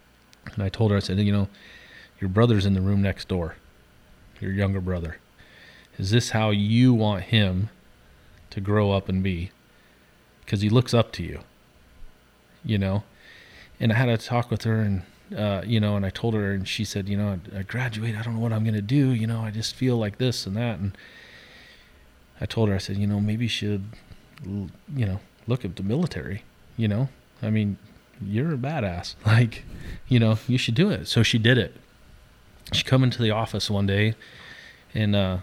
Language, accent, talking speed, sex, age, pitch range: English, American, 205 wpm, male, 30-49, 95-110 Hz